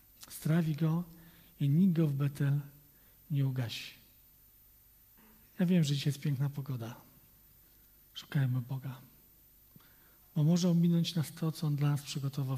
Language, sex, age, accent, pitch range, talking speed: Polish, male, 40-59, native, 125-150 Hz, 135 wpm